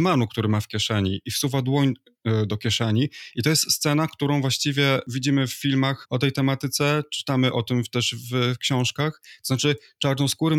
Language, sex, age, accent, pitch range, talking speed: Polish, male, 20-39, native, 115-135 Hz, 170 wpm